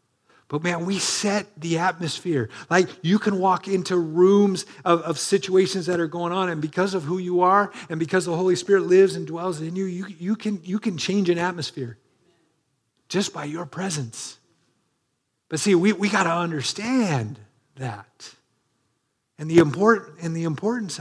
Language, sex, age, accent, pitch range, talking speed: English, male, 50-69, American, 130-185 Hz, 165 wpm